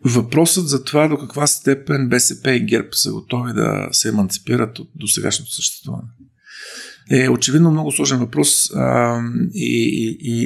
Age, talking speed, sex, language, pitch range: 50-69, 145 wpm, male, Bulgarian, 110-140 Hz